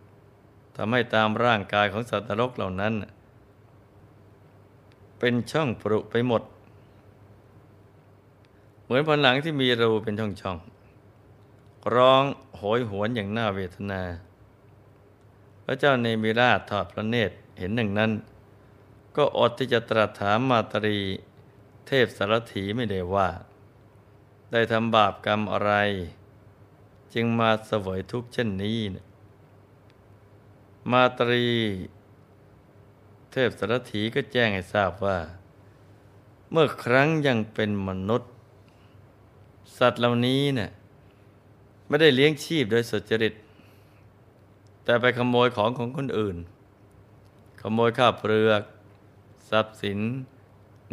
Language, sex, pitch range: Thai, male, 100-115 Hz